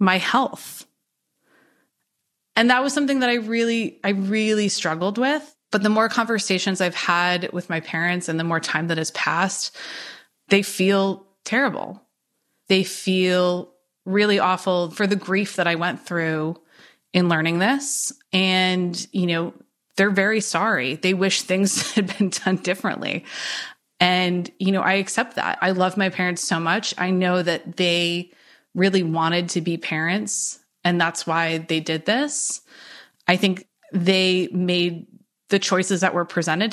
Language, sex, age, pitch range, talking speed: English, female, 20-39, 175-210 Hz, 155 wpm